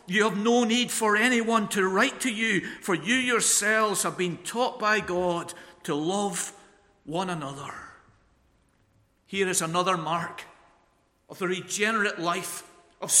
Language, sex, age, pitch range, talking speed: English, male, 50-69, 170-215 Hz, 140 wpm